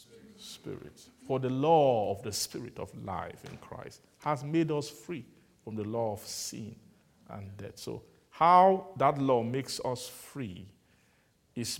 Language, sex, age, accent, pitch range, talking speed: English, male, 50-69, Nigerian, 115-165 Hz, 155 wpm